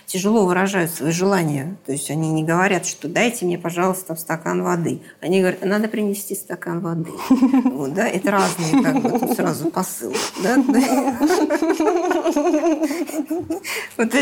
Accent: native